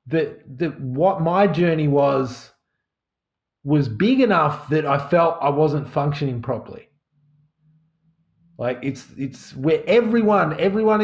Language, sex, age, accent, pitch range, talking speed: English, male, 30-49, Australian, 140-180 Hz, 120 wpm